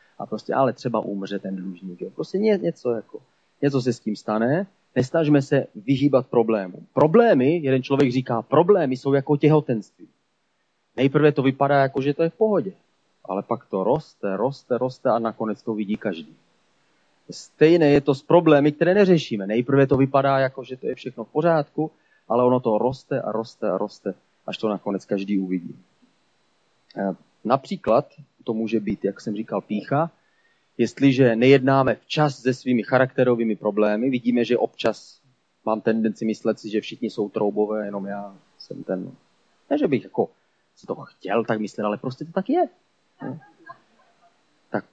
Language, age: Czech, 30-49